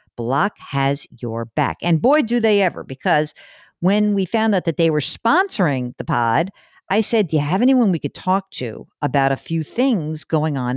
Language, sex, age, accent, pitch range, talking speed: English, female, 50-69, American, 155-215 Hz, 200 wpm